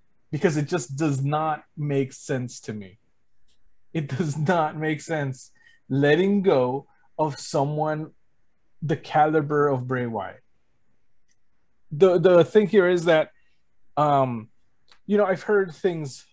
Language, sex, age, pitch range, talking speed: English, male, 20-39, 135-170 Hz, 130 wpm